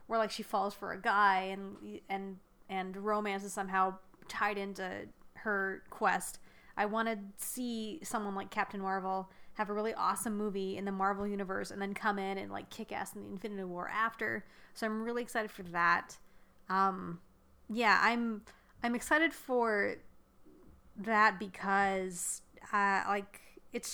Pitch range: 195-230 Hz